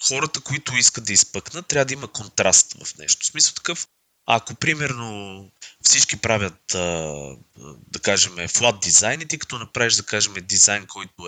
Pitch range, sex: 95-125 Hz, male